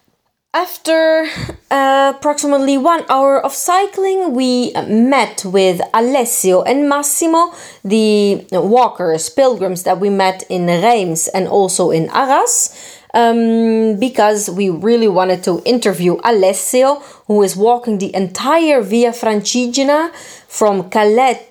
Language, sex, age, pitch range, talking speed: Italian, female, 30-49, 190-255 Hz, 115 wpm